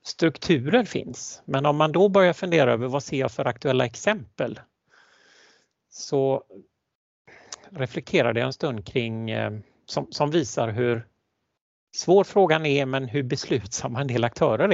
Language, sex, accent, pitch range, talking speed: Swedish, male, native, 115-150 Hz, 140 wpm